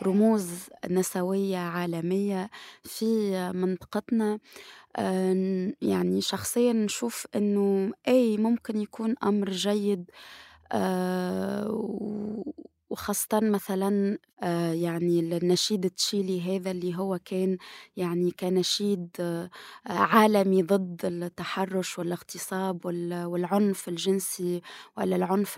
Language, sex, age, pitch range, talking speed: Arabic, female, 20-39, 185-210 Hz, 75 wpm